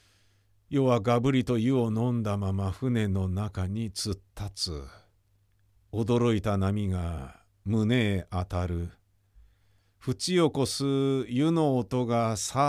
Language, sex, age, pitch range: Japanese, male, 50-69, 100-150 Hz